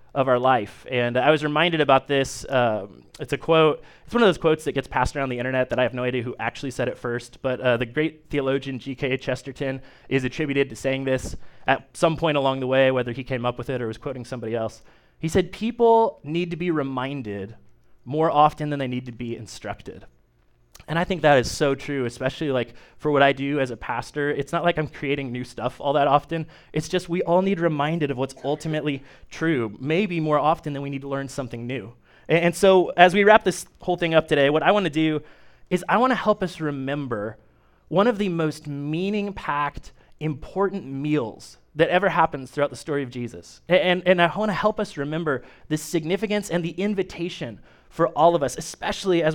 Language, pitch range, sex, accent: English, 130-165 Hz, male, American